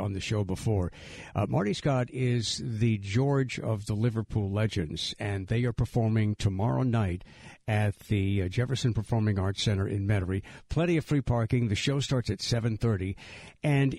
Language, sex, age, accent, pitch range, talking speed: English, male, 60-79, American, 105-140 Hz, 165 wpm